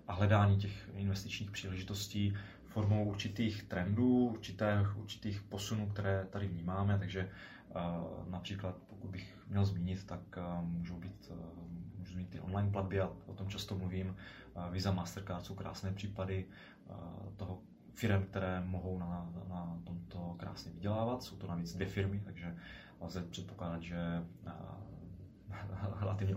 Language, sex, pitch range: Czech, male, 90-100 Hz